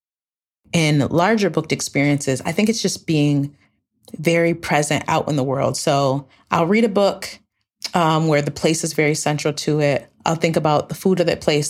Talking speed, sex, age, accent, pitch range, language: 190 wpm, female, 30-49, American, 140-160 Hz, English